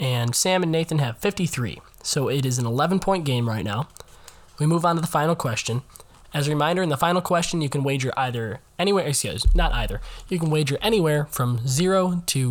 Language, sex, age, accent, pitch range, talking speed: English, male, 10-29, American, 115-170 Hz, 205 wpm